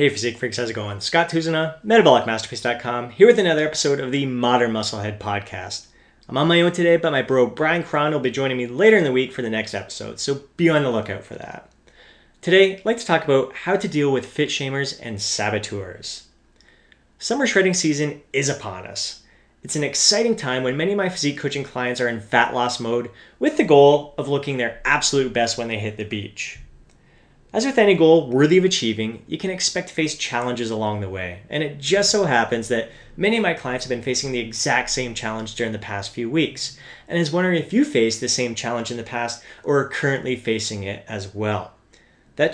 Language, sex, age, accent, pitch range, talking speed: English, male, 30-49, American, 115-160 Hz, 215 wpm